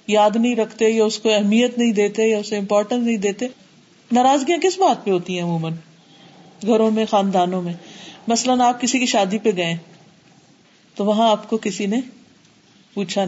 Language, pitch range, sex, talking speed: Urdu, 190-235 Hz, female, 175 wpm